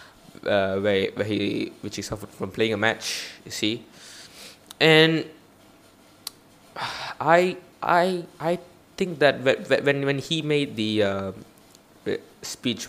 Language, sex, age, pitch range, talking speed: English, male, 20-39, 105-130 Hz, 130 wpm